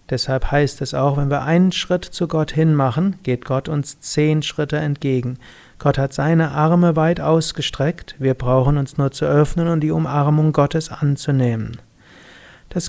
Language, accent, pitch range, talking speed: German, German, 135-165 Hz, 165 wpm